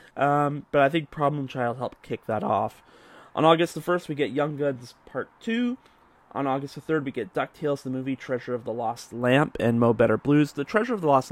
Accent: American